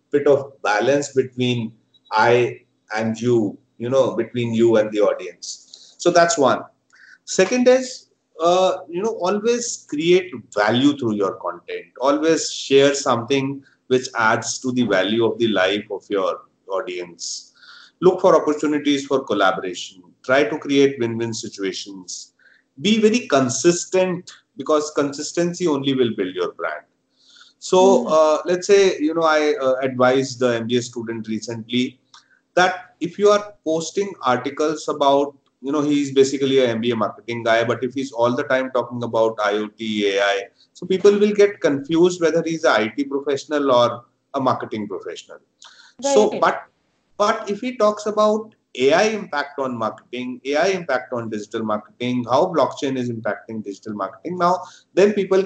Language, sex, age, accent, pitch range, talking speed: English, male, 30-49, Indian, 120-180 Hz, 150 wpm